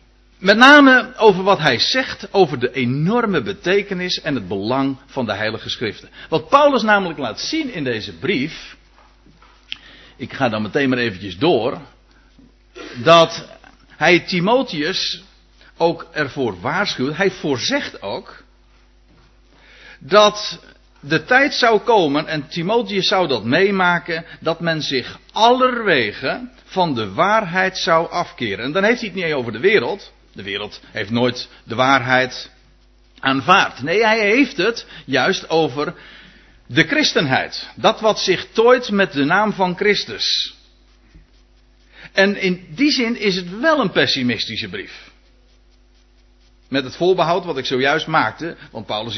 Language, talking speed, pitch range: Dutch, 140 wpm, 130-205 Hz